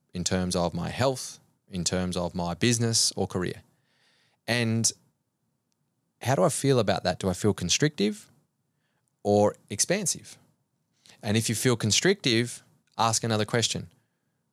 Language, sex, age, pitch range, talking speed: English, male, 20-39, 95-120 Hz, 135 wpm